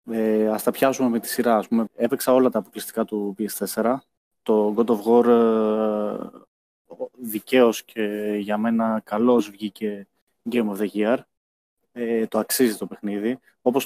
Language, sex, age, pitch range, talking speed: Greek, male, 20-39, 110-135 Hz, 150 wpm